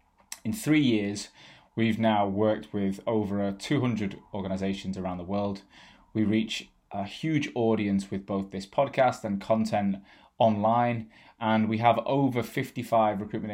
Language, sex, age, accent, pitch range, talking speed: English, male, 20-39, British, 100-120 Hz, 135 wpm